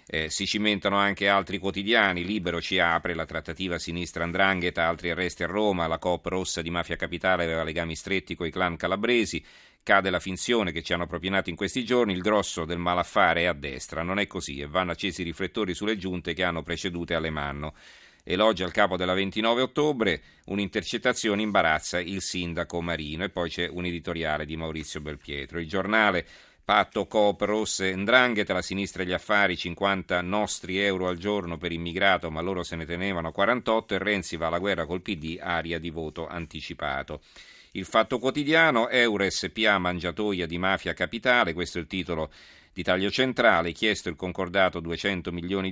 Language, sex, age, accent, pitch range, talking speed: Italian, male, 40-59, native, 85-100 Hz, 175 wpm